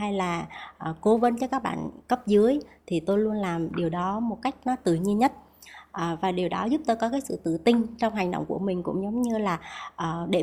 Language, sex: Vietnamese, male